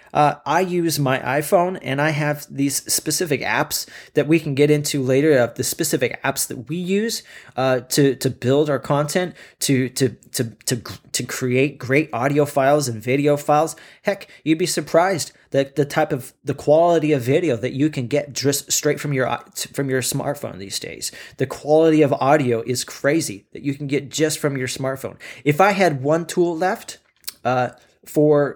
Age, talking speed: 30-49, 185 wpm